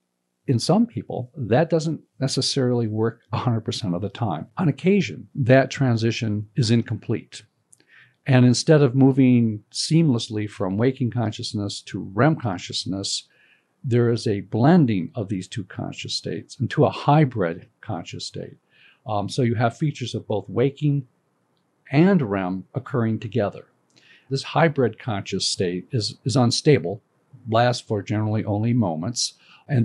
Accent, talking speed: American, 135 wpm